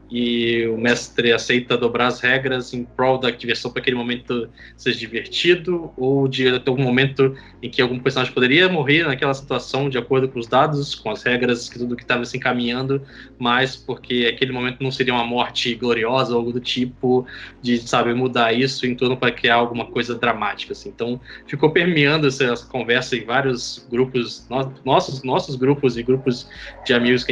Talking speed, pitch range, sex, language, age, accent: 190 wpm, 120-135 Hz, male, Portuguese, 20-39, Brazilian